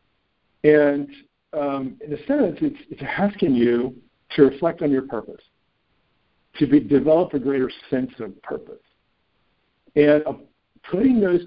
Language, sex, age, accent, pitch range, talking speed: English, male, 60-79, American, 120-155 Hz, 125 wpm